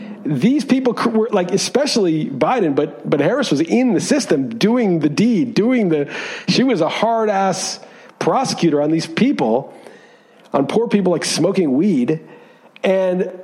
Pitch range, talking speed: 170-235 Hz, 150 wpm